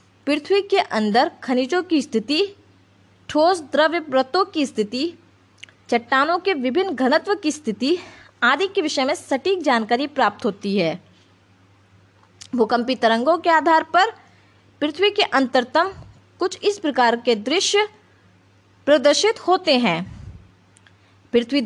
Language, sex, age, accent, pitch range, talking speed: Hindi, female, 20-39, native, 225-340 Hz, 120 wpm